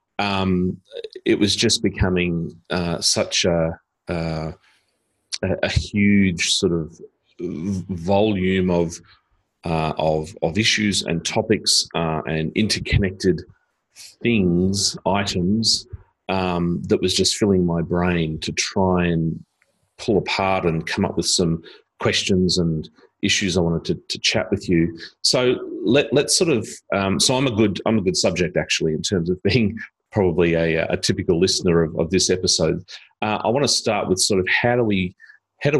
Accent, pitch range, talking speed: Australian, 85-100 Hz, 160 wpm